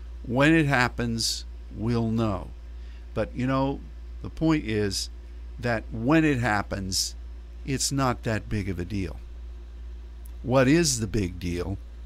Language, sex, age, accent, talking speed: English, male, 50-69, American, 135 wpm